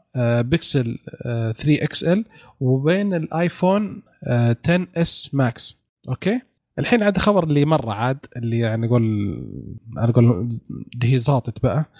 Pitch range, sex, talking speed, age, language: 125-155 Hz, male, 120 wpm, 30-49, Arabic